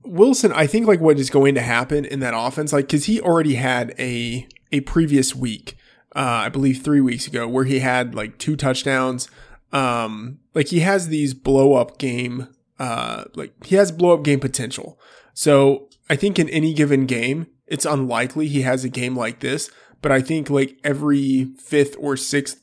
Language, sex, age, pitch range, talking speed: English, male, 20-39, 125-145 Hz, 190 wpm